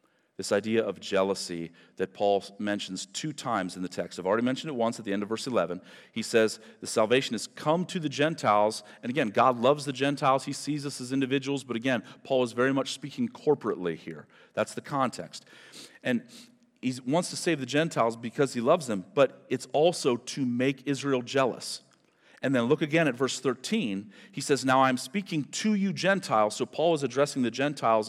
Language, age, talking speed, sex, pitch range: English, 40-59, 200 wpm, male, 135-195 Hz